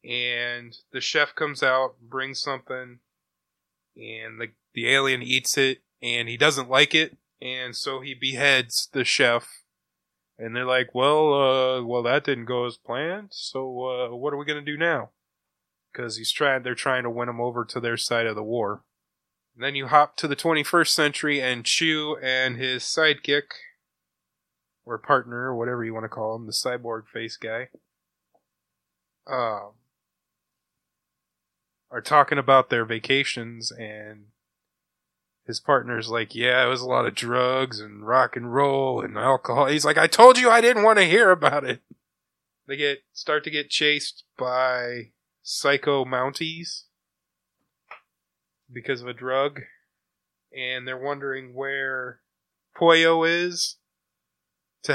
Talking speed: 155 wpm